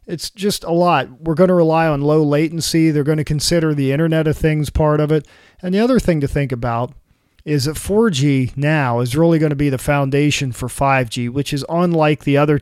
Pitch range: 130-155 Hz